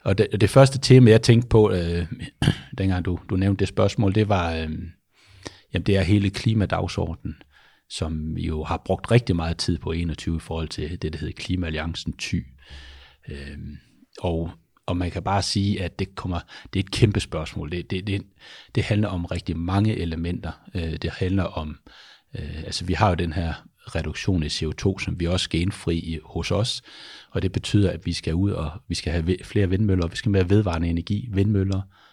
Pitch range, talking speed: 85-100 Hz, 195 wpm